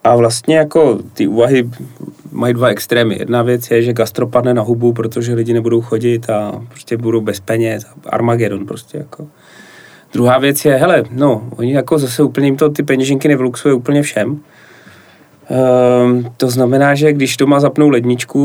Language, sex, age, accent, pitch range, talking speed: Czech, male, 30-49, native, 120-140 Hz, 170 wpm